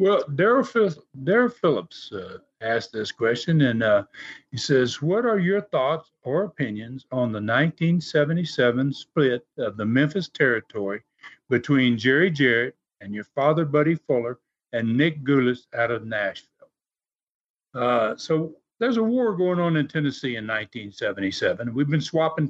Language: English